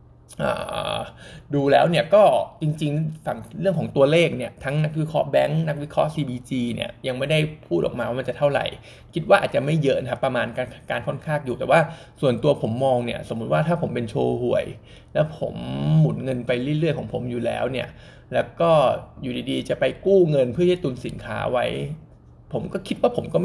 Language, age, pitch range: Thai, 20-39, 120-155 Hz